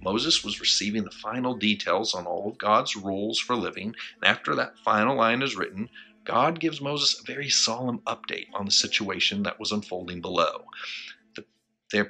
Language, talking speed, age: English, 175 wpm, 40-59